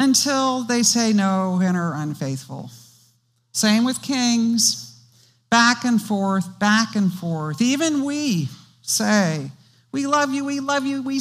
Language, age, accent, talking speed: English, 50-69, American, 140 wpm